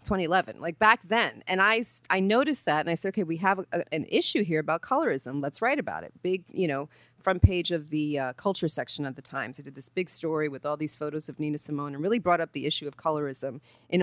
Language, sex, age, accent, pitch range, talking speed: English, female, 30-49, American, 145-180 Hz, 250 wpm